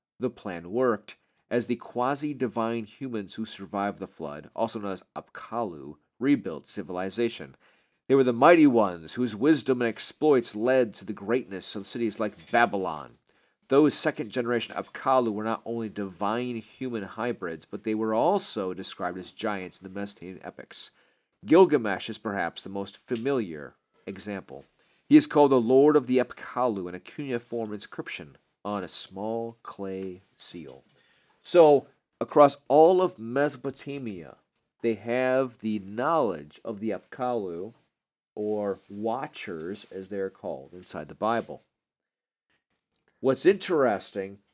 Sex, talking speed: male, 135 wpm